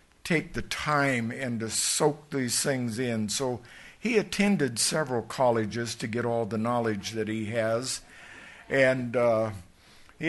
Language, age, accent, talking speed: English, 60-79, American, 145 wpm